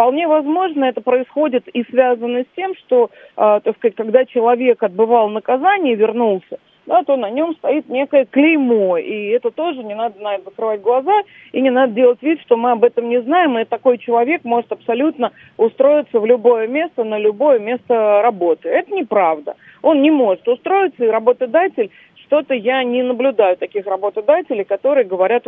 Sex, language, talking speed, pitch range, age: female, Russian, 165 wpm, 215-280 Hz, 40-59